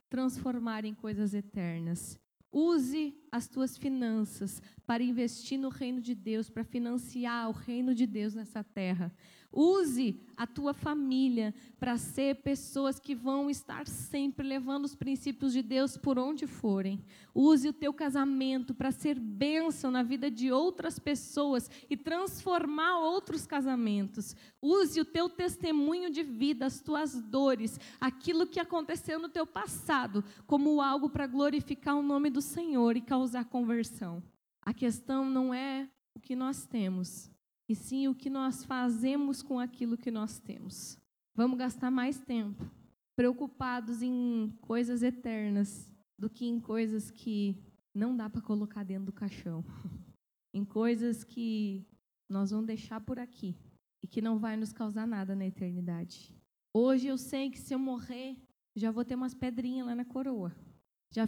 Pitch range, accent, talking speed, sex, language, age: 220-275 Hz, Brazilian, 150 wpm, female, Portuguese, 20-39